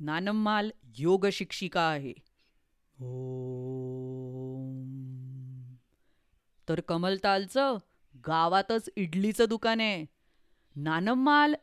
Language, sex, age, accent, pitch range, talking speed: English, female, 30-49, Indian, 170-245 Hz, 55 wpm